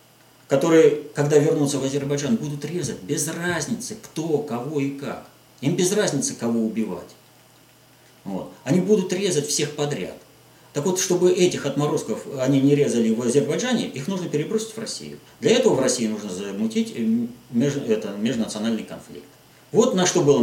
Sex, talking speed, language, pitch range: male, 145 wpm, Russian, 125-210 Hz